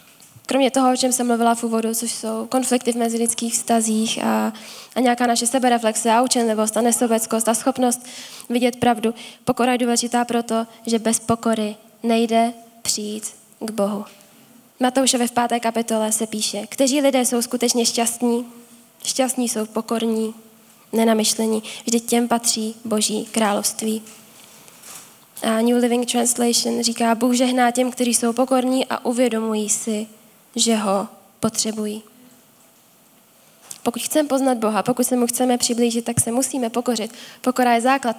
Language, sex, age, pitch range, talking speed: Czech, female, 10-29, 225-245 Hz, 145 wpm